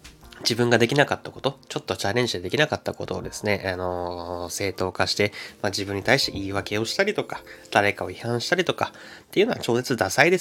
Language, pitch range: Japanese, 95-120 Hz